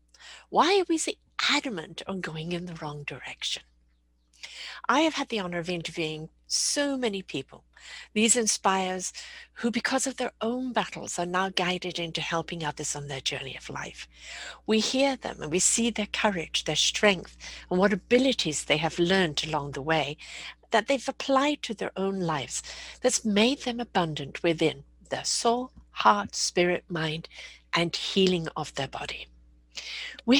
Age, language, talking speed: 60-79, English, 160 wpm